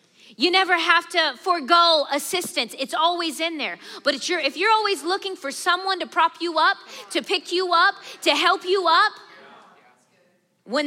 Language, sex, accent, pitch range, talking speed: English, female, American, 240-350 Hz, 175 wpm